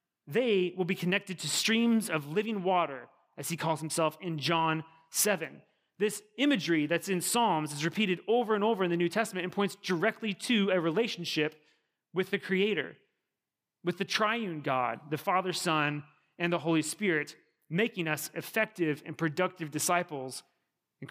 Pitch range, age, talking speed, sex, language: 155-205 Hz, 30-49, 160 wpm, male, English